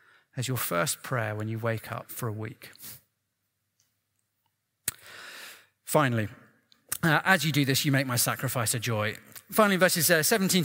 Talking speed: 150 wpm